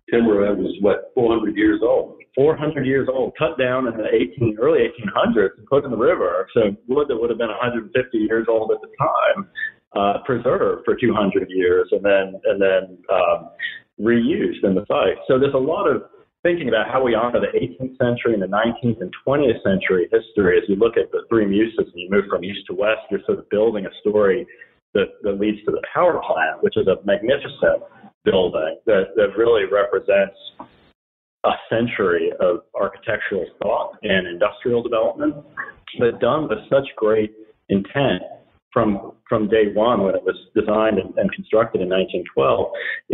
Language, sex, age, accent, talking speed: English, male, 40-59, American, 180 wpm